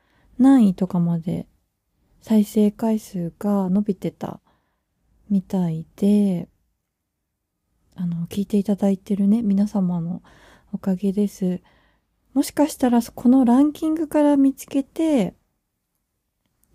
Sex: female